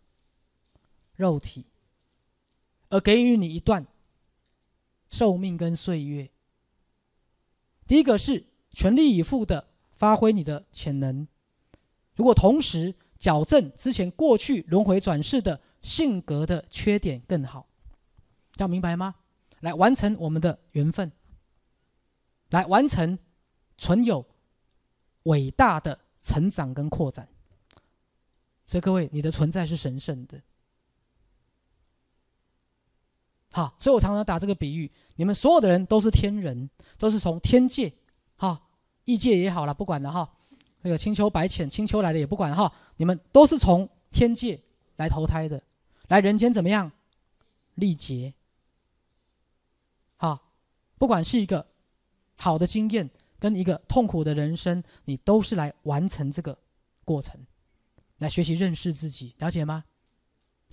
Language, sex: Chinese, male